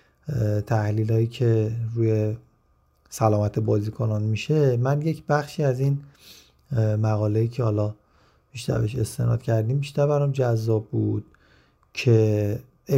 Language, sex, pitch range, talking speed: Persian, male, 105-130 Hz, 95 wpm